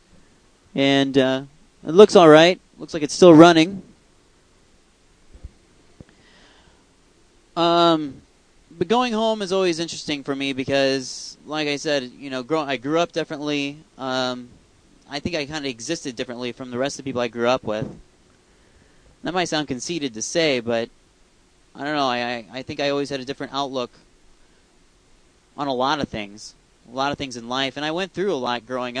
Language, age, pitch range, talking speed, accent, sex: English, 30-49, 120-155 Hz, 180 wpm, American, male